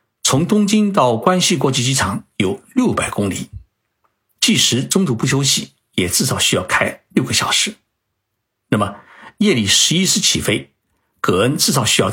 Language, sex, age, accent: Chinese, male, 60-79, native